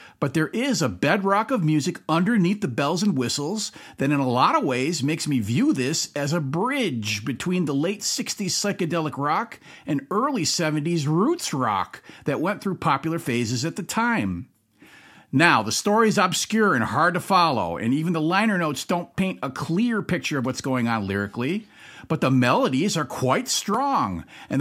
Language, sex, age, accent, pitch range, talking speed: English, male, 50-69, American, 130-190 Hz, 185 wpm